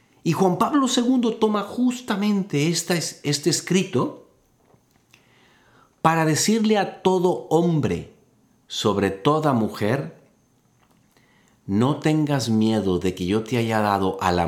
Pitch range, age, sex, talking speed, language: 100-145 Hz, 50-69, male, 110 wpm, Spanish